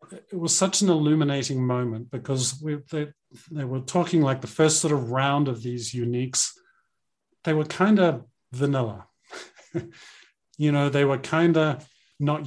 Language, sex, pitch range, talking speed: English, male, 125-160 Hz, 160 wpm